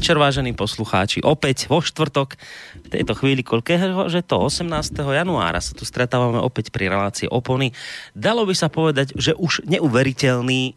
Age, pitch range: 30-49, 110-145 Hz